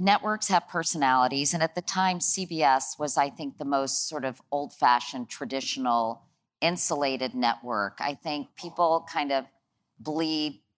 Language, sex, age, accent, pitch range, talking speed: English, female, 40-59, American, 130-170 Hz, 140 wpm